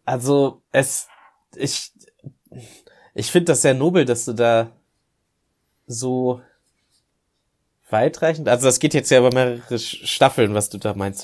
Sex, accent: male, German